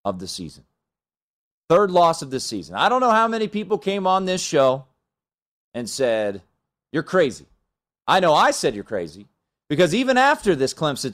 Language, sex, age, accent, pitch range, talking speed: English, male, 30-49, American, 145-220 Hz, 180 wpm